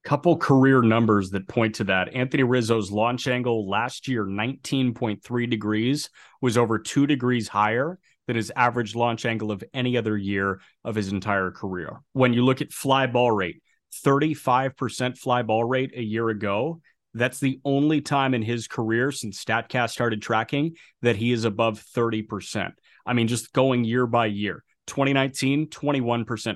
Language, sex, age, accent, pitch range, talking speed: English, male, 30-49, American, 115-145 Hz, 160 wpm